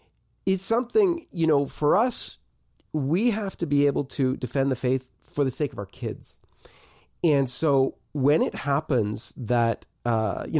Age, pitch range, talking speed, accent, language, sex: 30-49, 115-145 Hz, 165 wpm, American, English, male